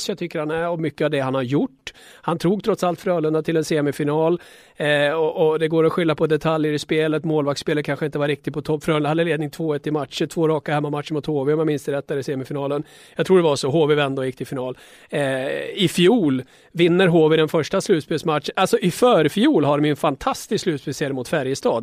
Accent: Swedish